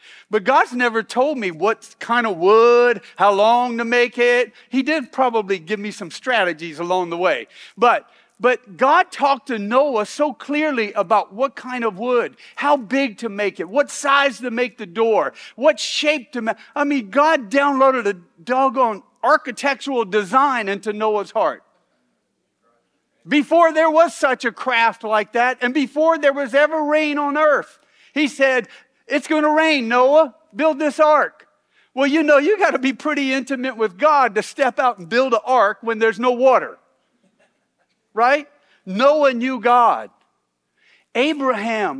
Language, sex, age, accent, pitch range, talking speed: English, male, 50-69, American, 220-285 Hz, 165 wpm